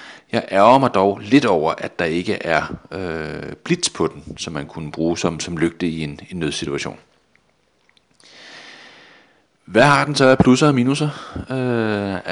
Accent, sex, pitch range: native, male, 85-110 Hz